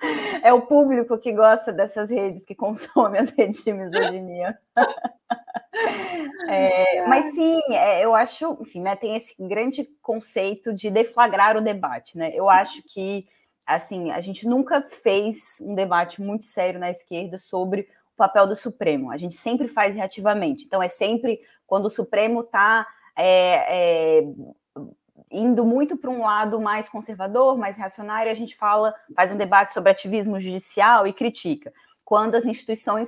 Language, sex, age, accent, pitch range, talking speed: Portuguese, female, 20-39, Brazilian, 190-235 Hz, 150 wpm